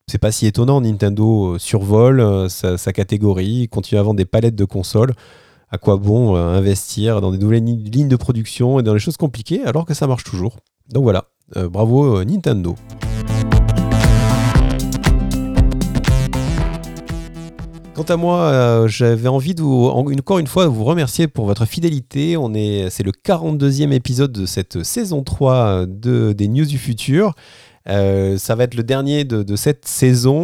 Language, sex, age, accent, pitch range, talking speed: French, male, 30-49, French, 105-135 Hz, 160 wpm